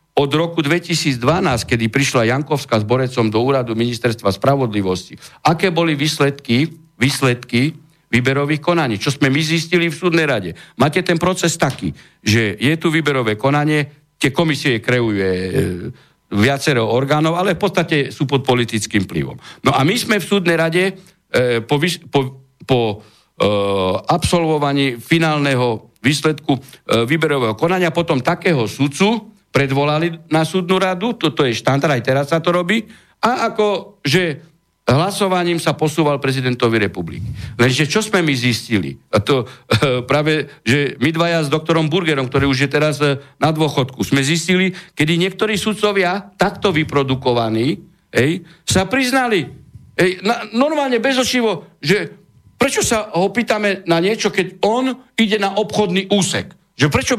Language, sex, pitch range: Slovak, male, 130-180 Hz